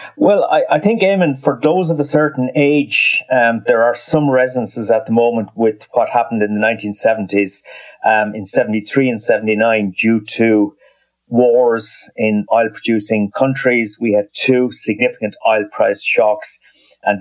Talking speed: 155 wpm